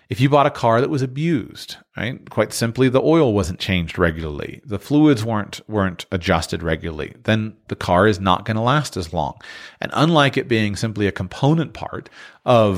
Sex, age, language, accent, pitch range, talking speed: male, 40-59, English, American, 95-130 Hz, 195 wpm